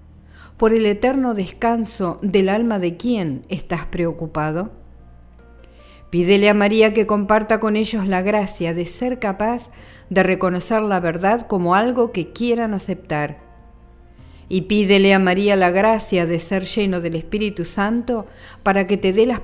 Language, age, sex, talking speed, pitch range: Spanish, 50-69, female, 150 wpm, 165-210 Hz